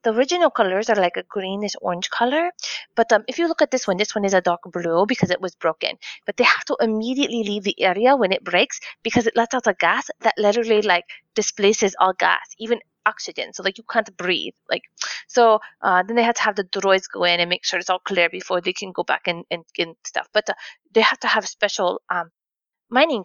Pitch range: 190-255 Hz